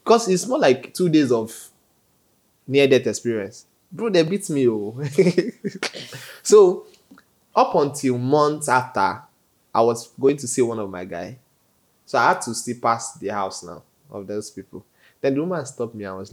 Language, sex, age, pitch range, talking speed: English, male, 20-39, 105-150 Hz, 175 wpm